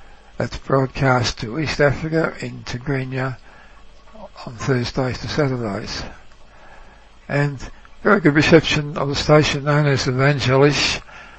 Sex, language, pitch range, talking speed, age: male, English, 130-150 Hz, 110 wpm, 60-79